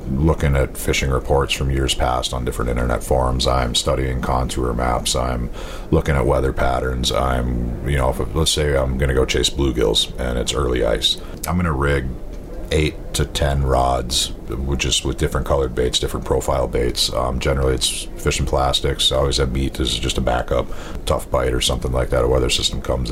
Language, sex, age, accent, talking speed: English, male, 40-59, American, 195 wpm